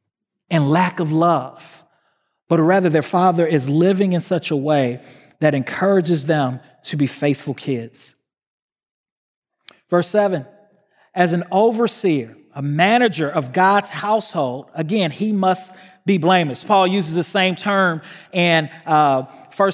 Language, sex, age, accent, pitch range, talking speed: English, male, 40-59, American, 155-195 Hz, 135 wpm